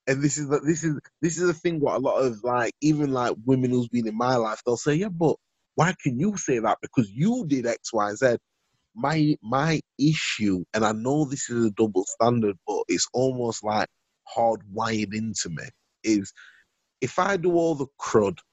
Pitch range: 110-140 Hz